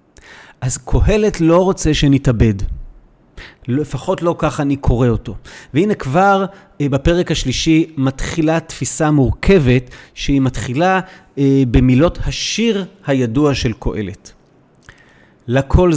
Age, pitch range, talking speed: 40-59, 130-170 Hz, 100 wpm